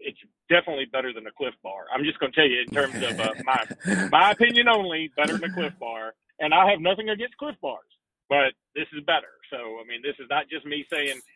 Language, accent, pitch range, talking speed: English, American, 140-175 Hz, 245 wpm